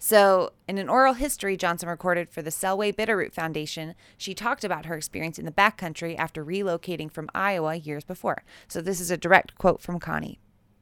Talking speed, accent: 185 wpm, American